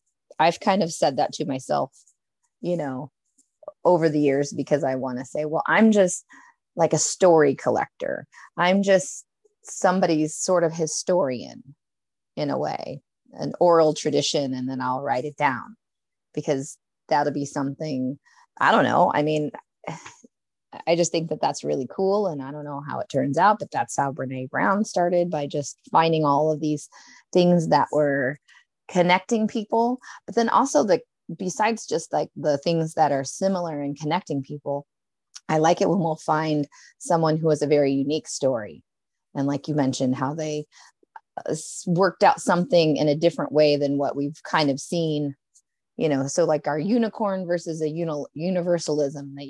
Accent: American